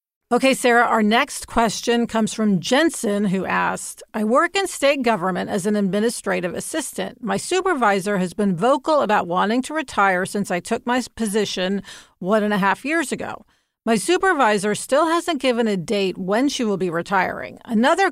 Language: English